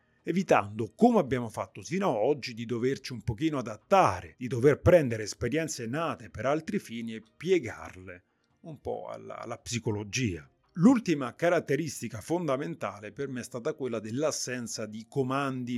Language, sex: Italian, male